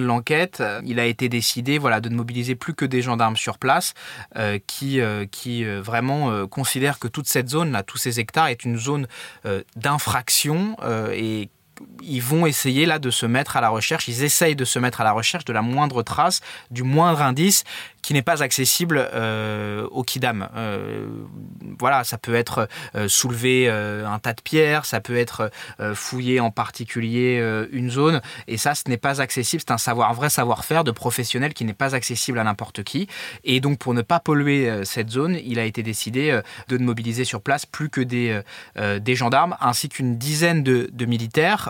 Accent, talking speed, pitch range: French, 200 wpm, 115-140 Hz